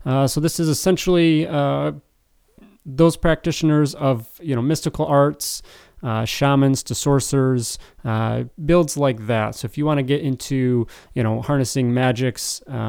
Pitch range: 115-140 Hz